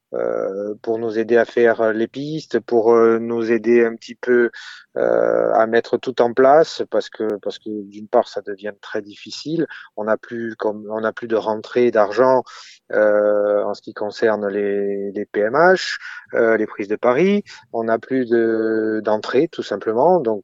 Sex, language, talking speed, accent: male, French, 180 wpm, French